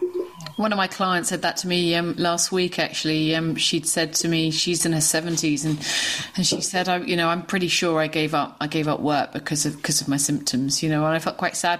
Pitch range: 155-195 Hz